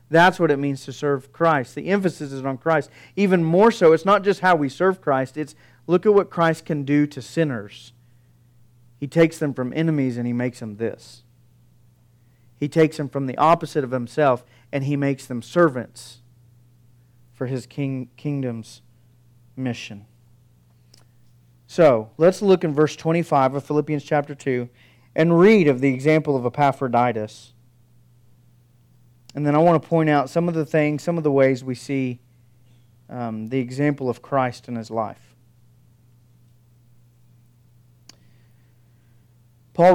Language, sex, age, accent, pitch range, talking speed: English, male, 40-59, American, 120-155 Hz, 155 wpm